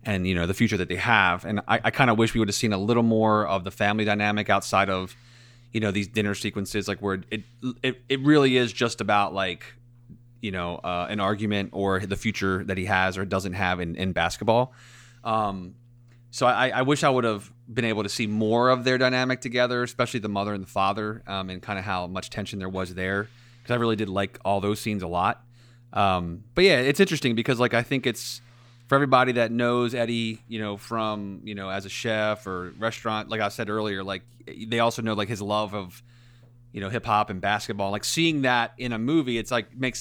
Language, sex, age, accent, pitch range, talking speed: English, male, 30-49, American, 100-120 Hz, 230 wpm